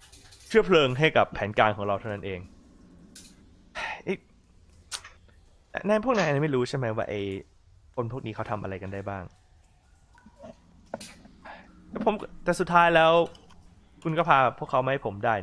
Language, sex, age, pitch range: Thai, male, 20-39, 90-120 Hz